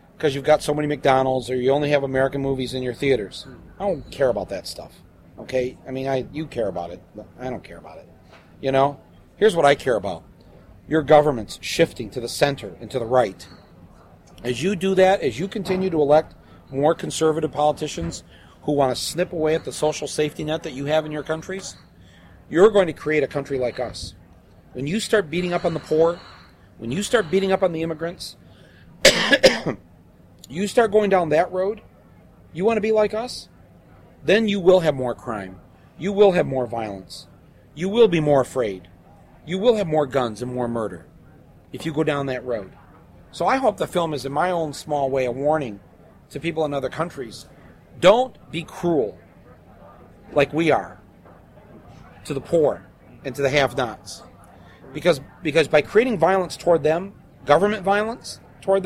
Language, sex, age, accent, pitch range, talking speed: German, male, 40-59, American, 120-175 Hz, 190 wpm